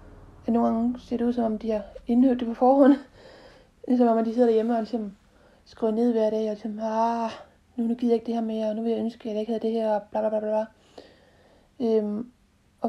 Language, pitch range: Danish, 220-255 Hz